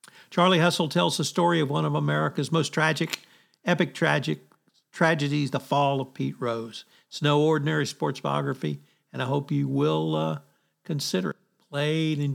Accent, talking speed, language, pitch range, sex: American, 165 wpm, English, 140-175 Hz, male